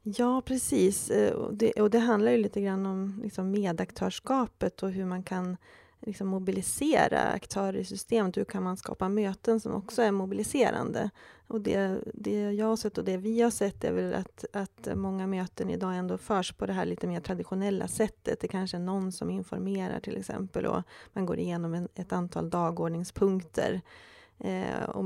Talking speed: 170 wpm